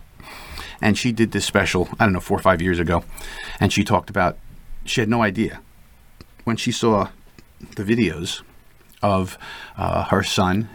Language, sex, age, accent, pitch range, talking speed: English, male, 50-69, American, 90-105 Hz, 165 wpm